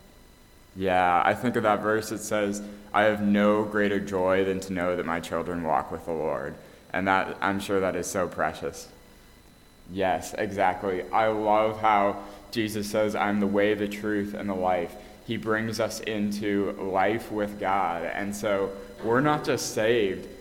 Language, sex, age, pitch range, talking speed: English, male, 20-39, 100-115 Hz, 175 wpm